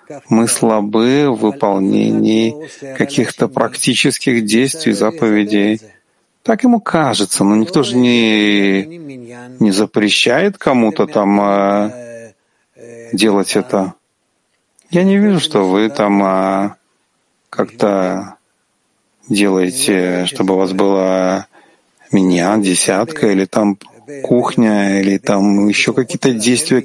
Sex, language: male, Ukrainian